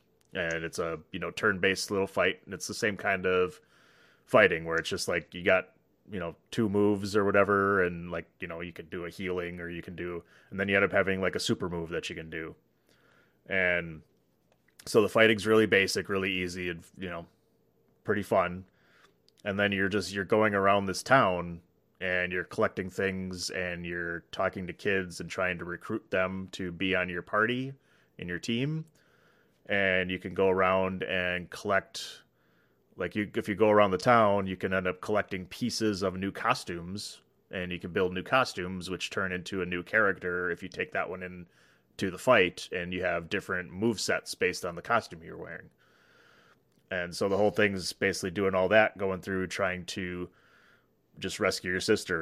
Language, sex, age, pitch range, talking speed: English, male, 30-49, 90-100 Hz, 195 wpm